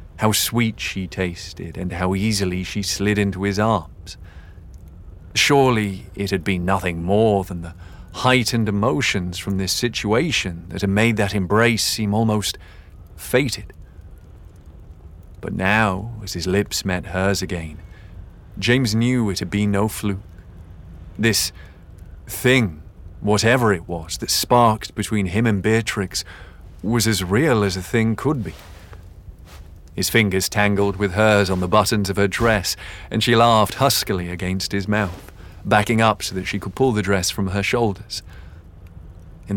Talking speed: 150 wpm